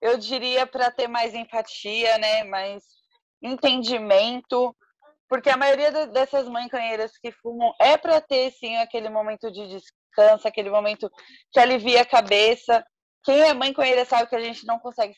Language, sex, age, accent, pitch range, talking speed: Portuguese, female, 20-39, Brazilian, 225-280 Hz, 160 wpm